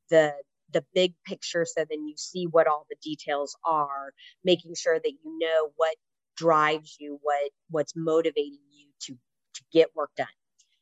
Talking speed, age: 165 wpm, 30-49